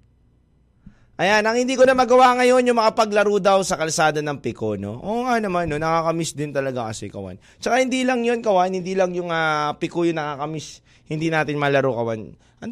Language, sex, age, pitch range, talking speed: Filipino, male, 20-39, 140-190 Hz, 195 wpm